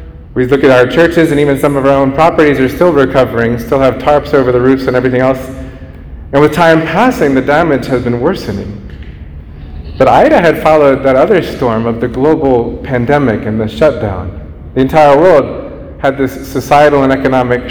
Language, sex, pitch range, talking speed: English, male, 110-150 Hz, 185 wpm